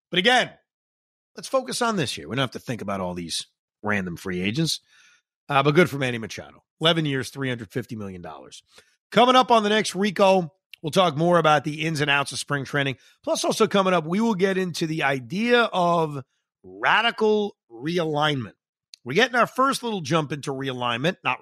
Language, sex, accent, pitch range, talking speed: English, male, American, 120-170 Hz, 190 wpm